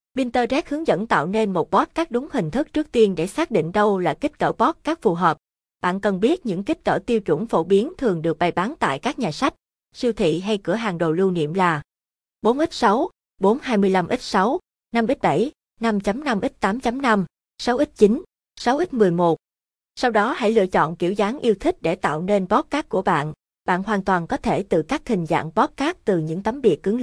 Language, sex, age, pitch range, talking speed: Vietnamese, female, 20-39, 180-240 Hz, 190 wpm